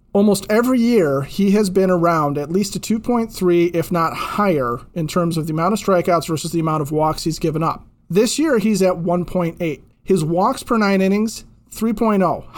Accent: American